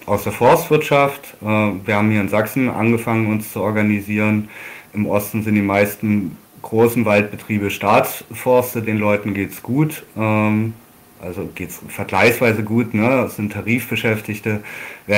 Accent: German